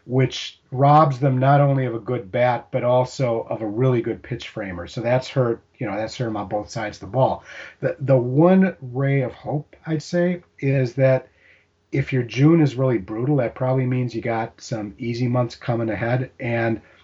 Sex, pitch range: male, 105-130 Hz